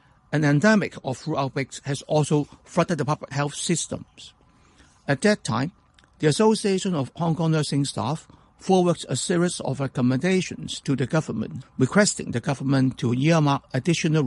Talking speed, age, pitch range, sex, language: 150 wpm, 60-79, 130-170 Hz, male, English